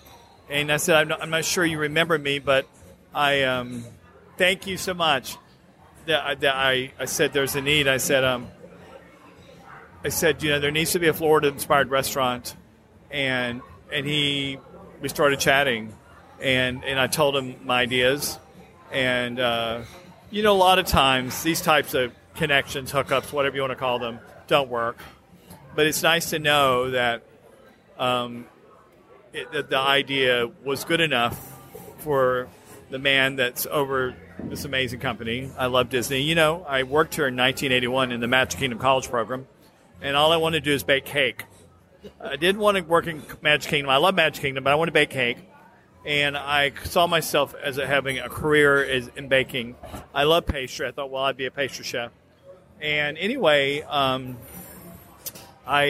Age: 40-59